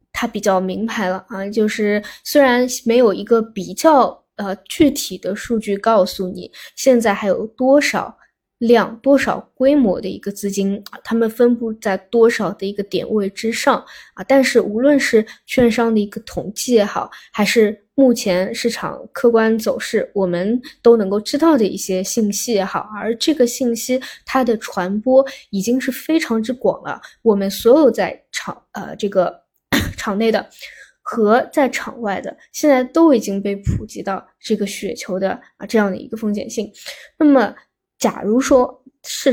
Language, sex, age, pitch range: Chinese, female, 10-29, 205-255 Hz